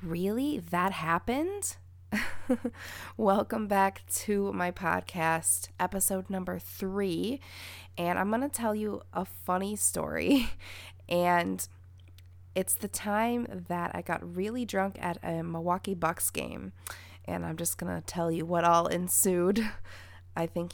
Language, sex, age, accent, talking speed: English, female, 20-39, American, 130 wpm